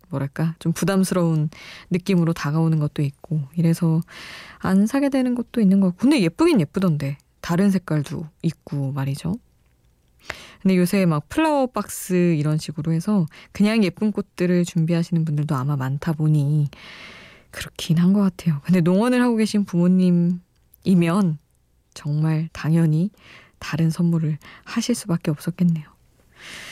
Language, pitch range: Korean, 155-200 Hz